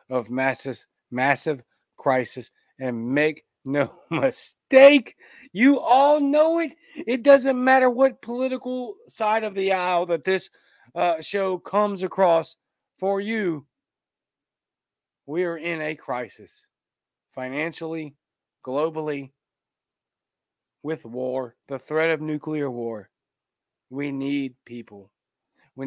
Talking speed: 105 wpm